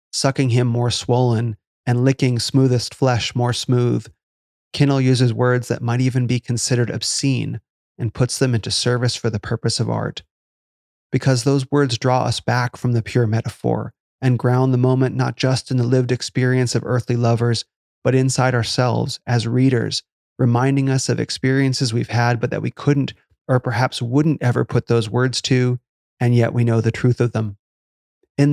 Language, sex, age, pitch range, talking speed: English, male, 30-49, 115-130 Hz, 175 wpm